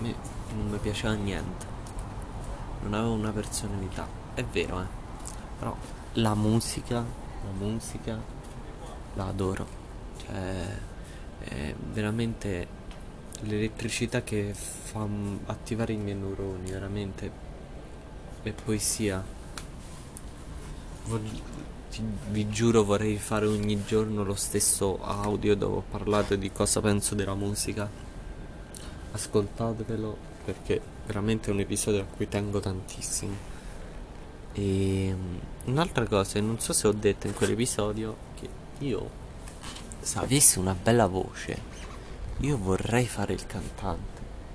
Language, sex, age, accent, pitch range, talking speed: Italian, male, 20-39, native, 95-110 Hz, 110 wpm